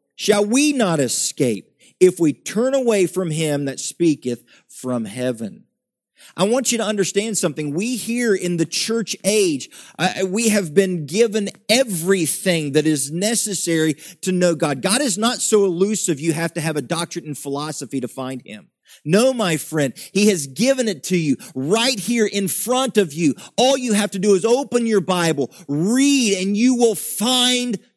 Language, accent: English, American